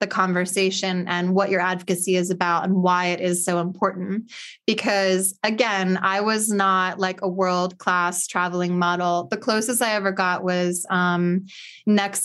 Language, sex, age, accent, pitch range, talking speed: English, female, 20-39, American, 185-205 Hz, 155 wpm